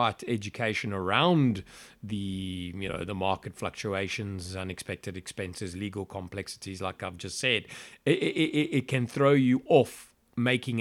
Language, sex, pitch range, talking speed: English, male, 105-140 Hz, 135 wpm